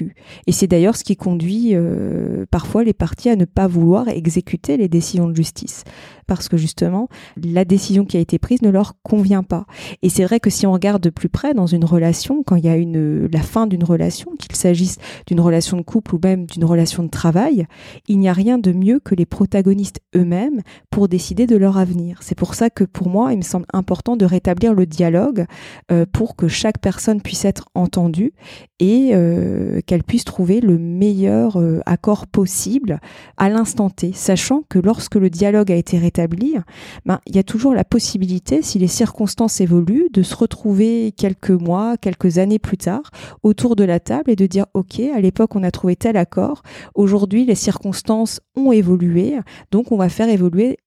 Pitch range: 180-225 Hz